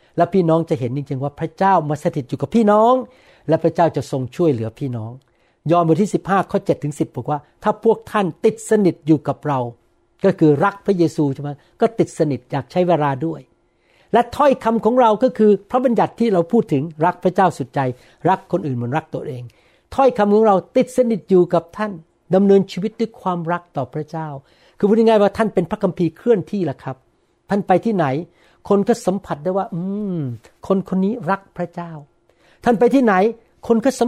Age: 60-79